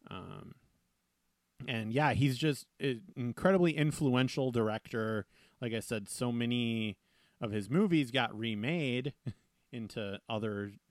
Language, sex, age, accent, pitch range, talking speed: English, male, 30-49, American, 110-130 Hz, 115 wpm